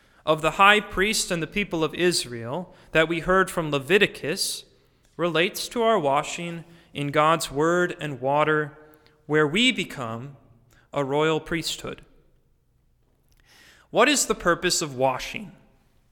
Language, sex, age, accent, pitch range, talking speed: English, male, 30-49, American, 155-210 Hz, 130 wpm